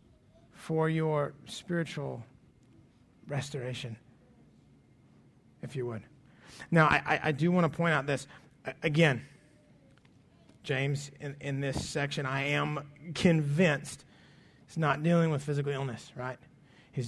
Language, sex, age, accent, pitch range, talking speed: English, male, 30-49, American, 130-150 Hz, 115 wpm